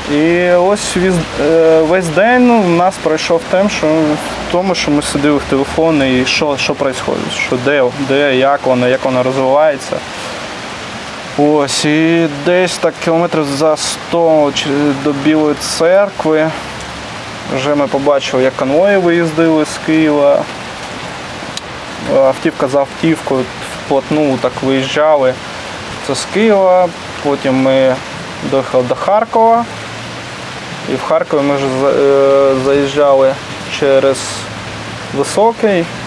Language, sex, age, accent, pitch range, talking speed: Ukrainian, male, 20-39, native, 135-165 Hz, 115 wpm